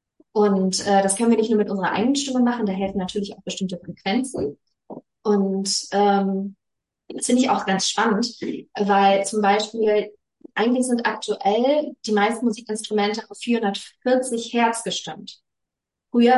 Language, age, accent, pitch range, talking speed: German, 20-39, German, 195-235 Hz, 145 wpm